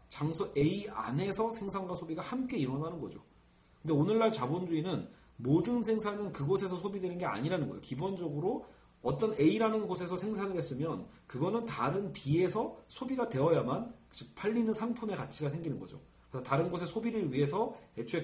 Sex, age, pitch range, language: male, 40-59, 145-205 Hz, Korean